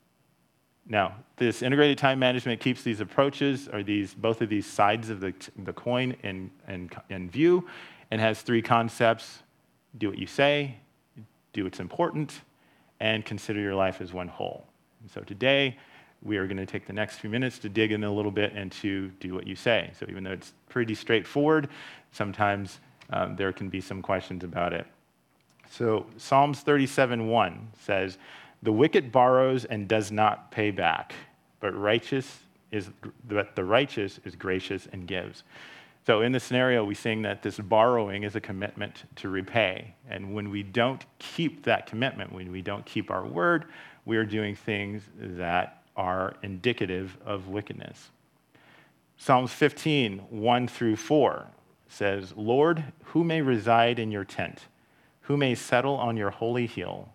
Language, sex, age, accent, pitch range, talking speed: English, male, 40-59, American, 100-125 Hz, 160 wpm